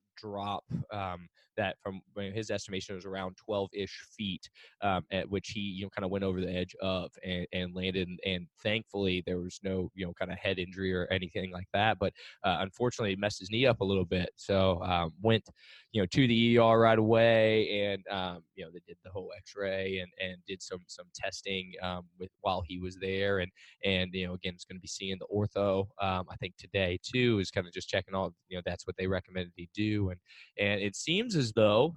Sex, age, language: male, 20-39, English